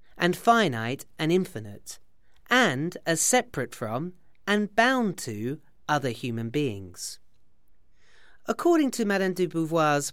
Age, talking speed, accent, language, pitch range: 40-59, 115 wpm, British, Swedish, 125-200 Hz